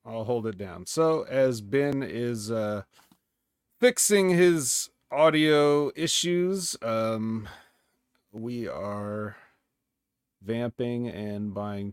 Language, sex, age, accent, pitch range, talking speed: English, male, 30-49, American, 110-140 Hz, 95 wpm